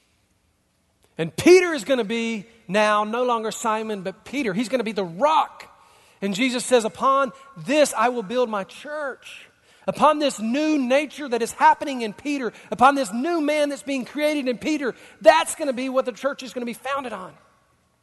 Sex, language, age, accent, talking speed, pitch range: male, English, 40-59, American, 195 wpm, 170-270 Hz